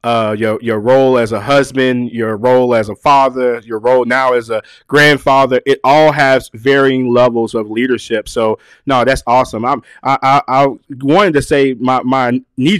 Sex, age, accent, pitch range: male, 20-39, American, 125-140 Hz